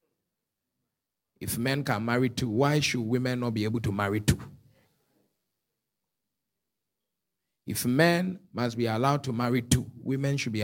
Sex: male